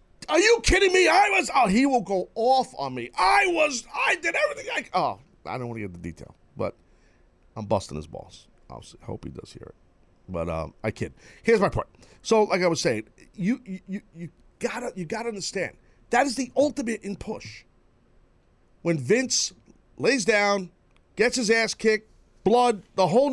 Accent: American